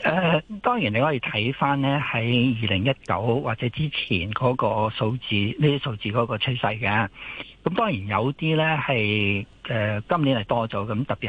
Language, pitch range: Chinese, 110-145 Hz